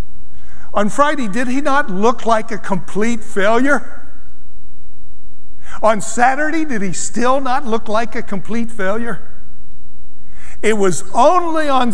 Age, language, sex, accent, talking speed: 60-79, English, male, American, 125 wpm